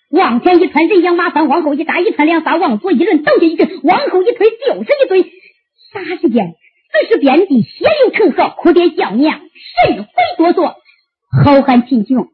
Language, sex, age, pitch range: Chinese, male, 50-69, 300-385 Hz